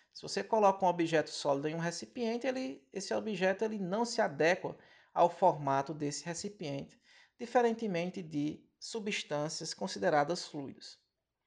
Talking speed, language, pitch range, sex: 130 wpm, Portuguese, 170-220 Hz, male